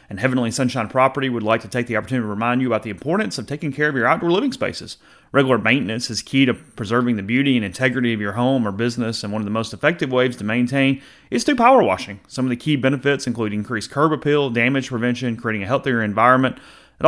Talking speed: 240 wpm